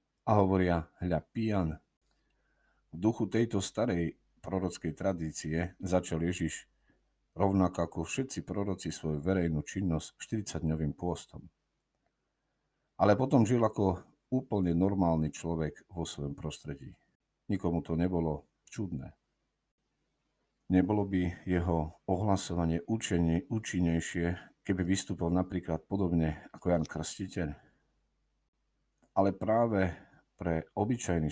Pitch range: 80-95 Hz